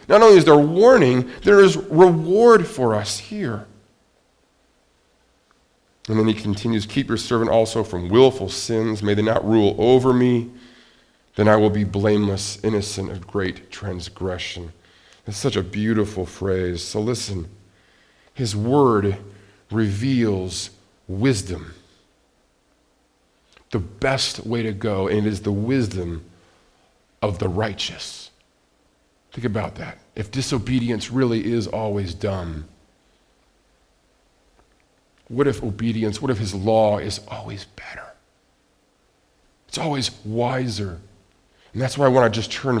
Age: 40-59